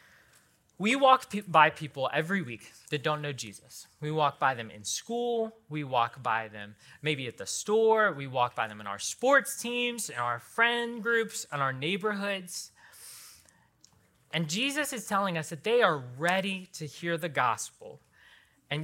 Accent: American